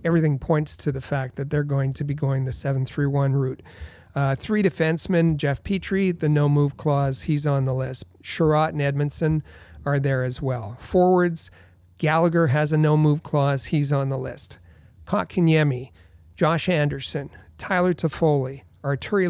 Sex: male